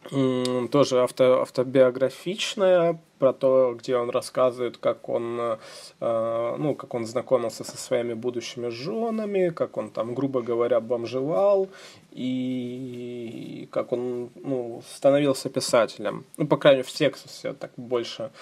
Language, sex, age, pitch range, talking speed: Russian, male, 20-39, 125-150 Hz, 135 wpm